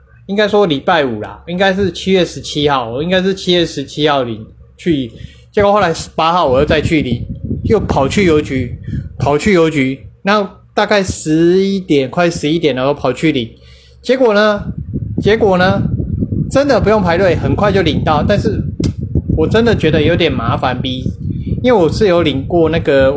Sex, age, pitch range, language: male, 20-39, 130-185 Hz, Chinese